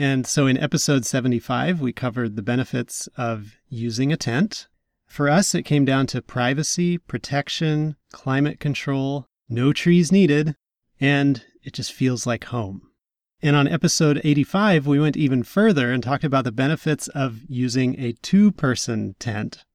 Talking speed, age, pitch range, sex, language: 150 wpm, 30-49, 125-155 Hz, male, English